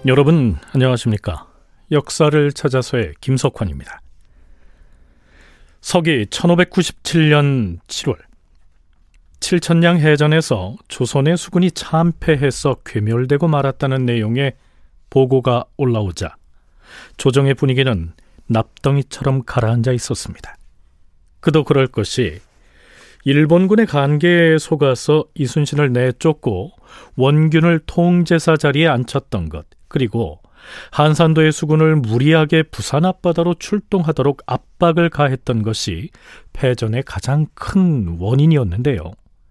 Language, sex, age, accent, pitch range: Korean, male, 40-59, native, 110-160 Hz